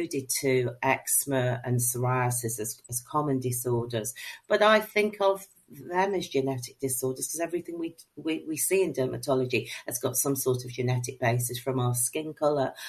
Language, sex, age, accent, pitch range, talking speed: English, female, 50-69, British, 125-165 Hz, 165 wpm